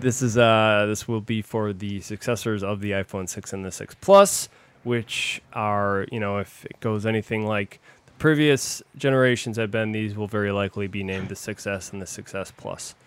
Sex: male